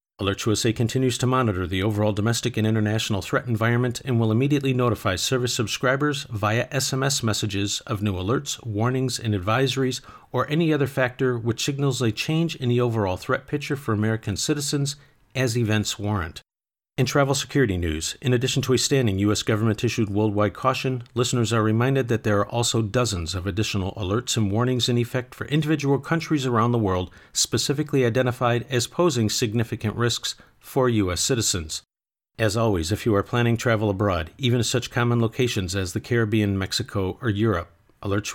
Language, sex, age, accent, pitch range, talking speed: English, male, 50-69, American, 105-130 Hz, 170 wpm